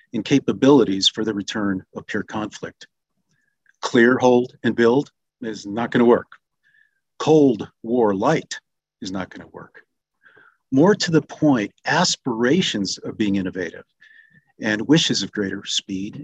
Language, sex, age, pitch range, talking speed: English, male, 50-69, 110-150 Hz, 135 wpm